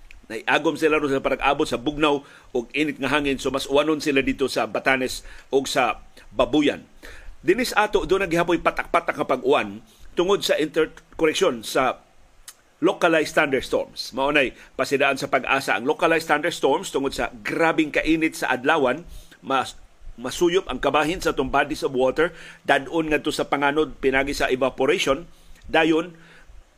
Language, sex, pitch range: Filipino, male, 135-185 Hz